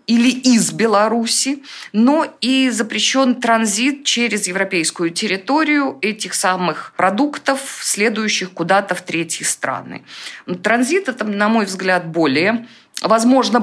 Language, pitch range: Russian, 195-260 Hz